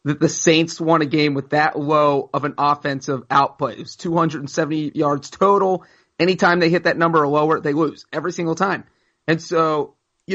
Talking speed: 190 wpm